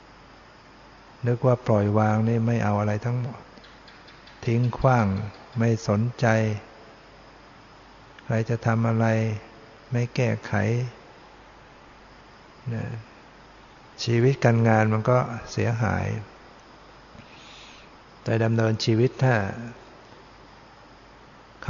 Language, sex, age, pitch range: Thai, male, 60-79, 110-120 Hz